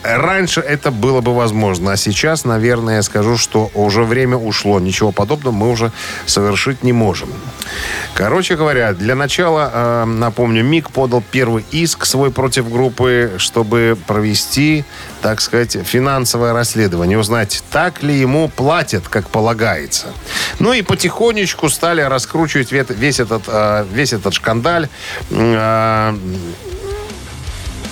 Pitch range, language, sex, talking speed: 100-135 Hz, Russian, male, 120 wpm